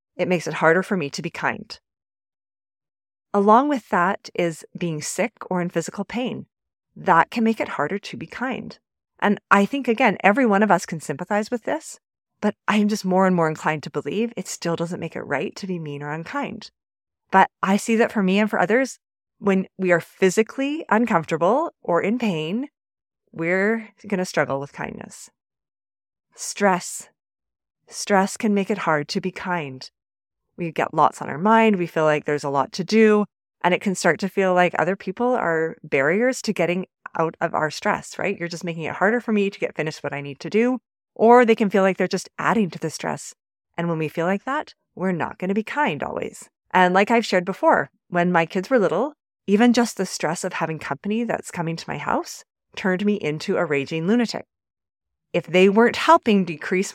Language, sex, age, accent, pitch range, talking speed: English, female, 30-49, American, 170-220 Hz, 205 wpm